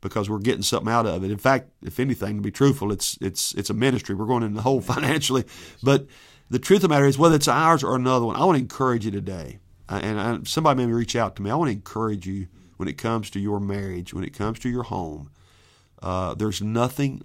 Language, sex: English, male